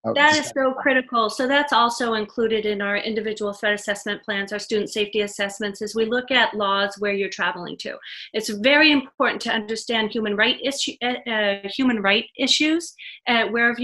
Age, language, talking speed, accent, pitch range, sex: 30-49, English, 180 wpm, American, 215-260 Hz, female